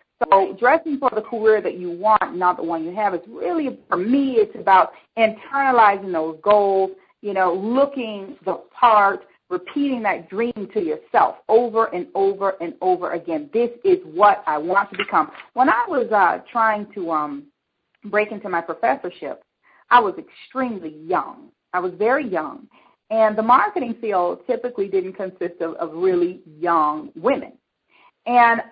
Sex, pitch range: female, 185-260 Hz